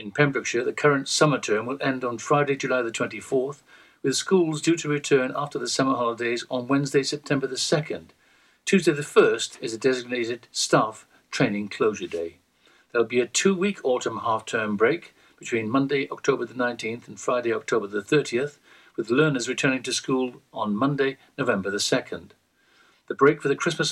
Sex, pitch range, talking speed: male, 120-155 Hz, 175 wpm